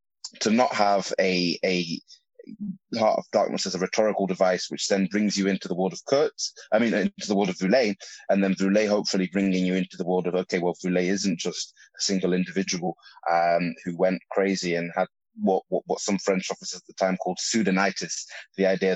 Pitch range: 90-100 Hz